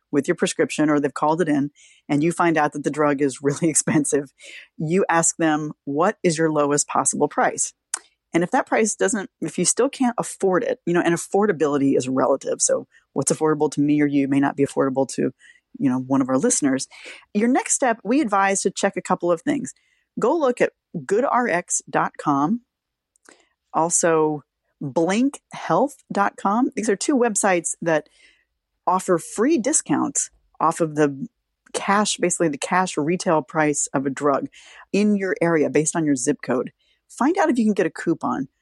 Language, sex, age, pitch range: English, female, 30-49, 150-215 Hz